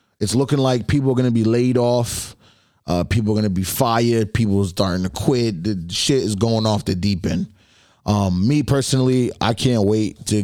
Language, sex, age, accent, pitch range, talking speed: English, male, 30-49, American, 95-115 Hz, 215 wpm